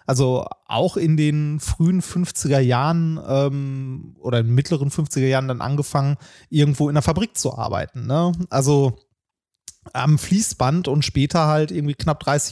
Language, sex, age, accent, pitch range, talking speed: German, male, 30-49, German, 125-155 Hz, 155 wpm